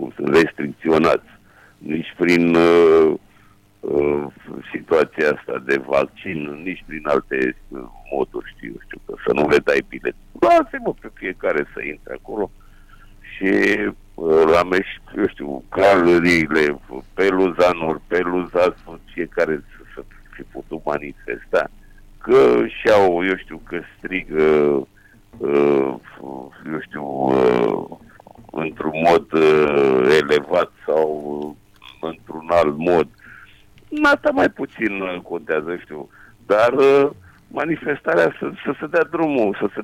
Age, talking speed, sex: 60-79, 110 wpm, male